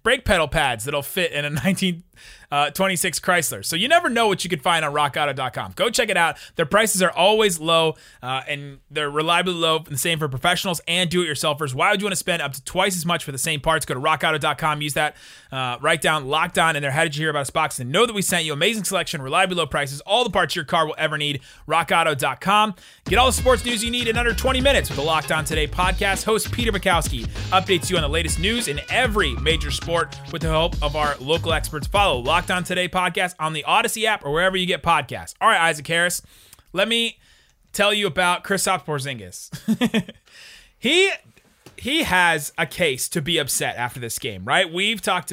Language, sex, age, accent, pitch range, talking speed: English, male, 30-49, American, 150-190 Hz, 225 wpm